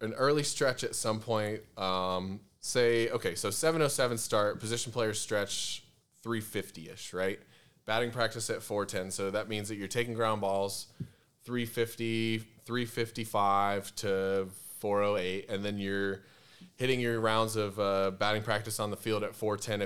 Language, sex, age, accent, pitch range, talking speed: English, male, 20-39, American, 100-115 Hz, 145 wpm